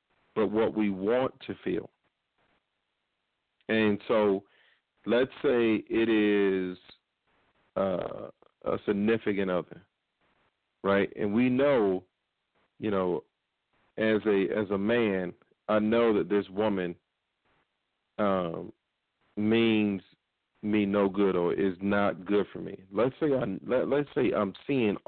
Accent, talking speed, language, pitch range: American, 120 wpm, English, 95-115 Hz